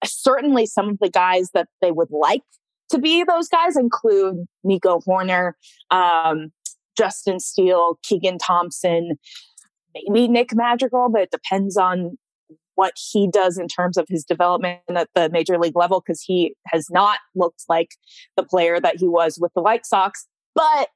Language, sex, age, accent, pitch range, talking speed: English, female, 20-39, American, 175-225 Hz, 165 wpm